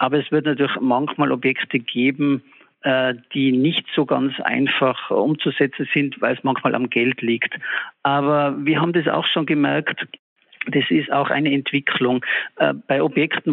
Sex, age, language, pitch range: male, 50-69, German, 130-150 Hz